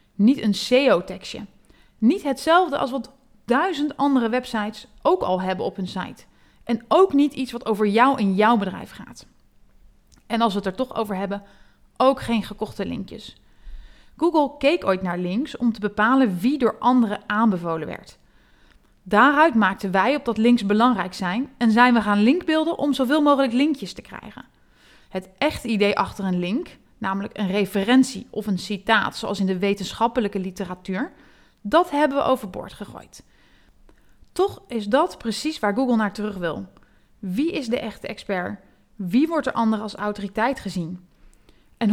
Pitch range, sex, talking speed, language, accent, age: 200-275 Hz, female, 165 wpm, Dutch, Dutch, 30-49